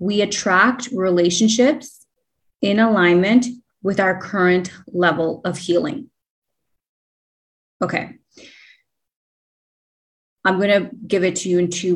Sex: female